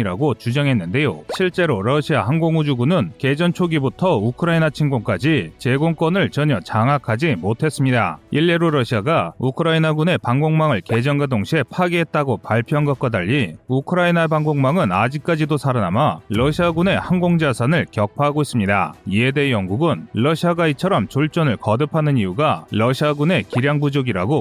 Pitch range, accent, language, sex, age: 125-165 Hz, native, Korean, male, 30-49